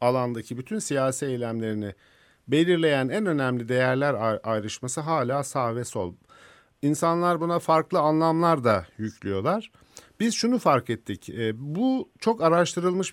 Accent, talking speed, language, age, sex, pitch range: native, 120 wpm, Turkish, 50-69, male, 115-175 Hz